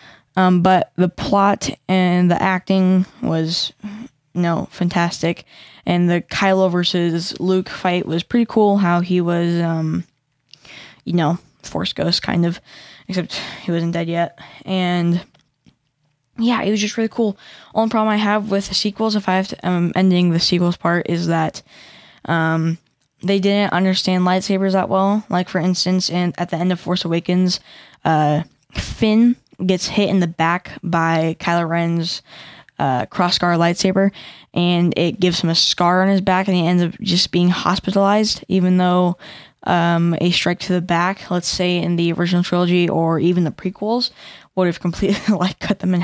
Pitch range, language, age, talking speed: 170-195 Hz, English, 10-29, 170 wpm